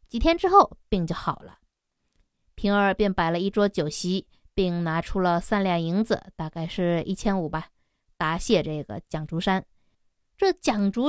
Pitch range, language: 185-245 Hz, Chinese